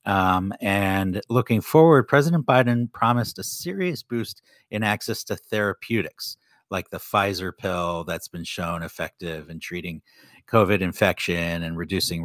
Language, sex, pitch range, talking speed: English, male, 85-110 Hz, 135 wpm